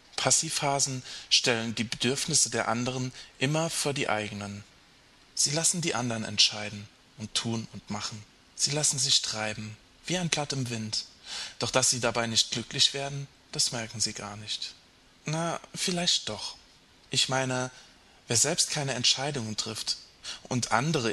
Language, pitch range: German, 110-145 Hz